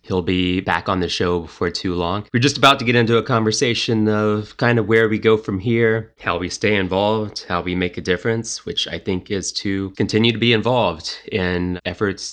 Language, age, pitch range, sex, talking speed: English, 20-39, 90-115 Hz, male, 220 wpm